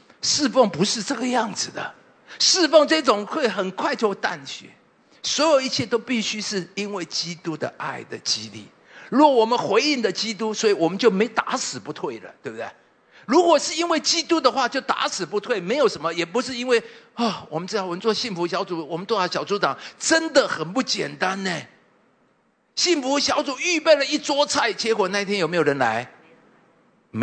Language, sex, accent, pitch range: English, male, Chinese, 165-255 Hz